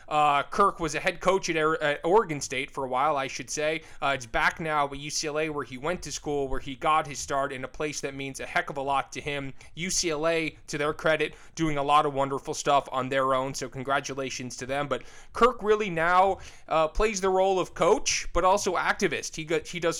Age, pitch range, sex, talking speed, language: 20-39, 140-165 Hz, male, 235 wpm, English